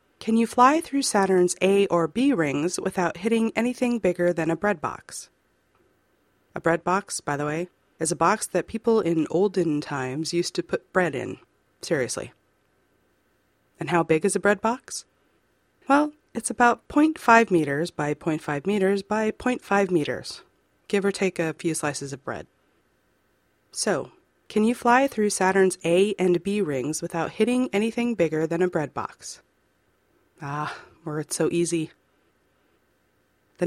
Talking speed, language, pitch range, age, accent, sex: 155 wpm, English, 165-225 Hz, 30-49, American, female